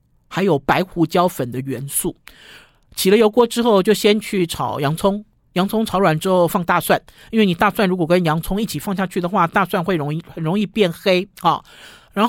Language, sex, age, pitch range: Chinese, male, 50-69, 160-215 Hz